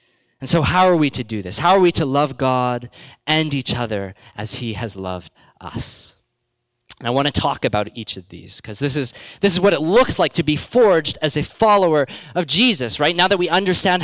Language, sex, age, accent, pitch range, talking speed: English, male, 20-39, American, 120-180 Hz, 225 wpm